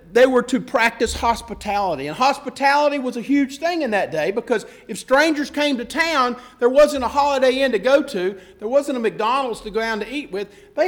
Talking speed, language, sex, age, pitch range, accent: 215 wpm, English, male, 50-69, 210-310 Hz, American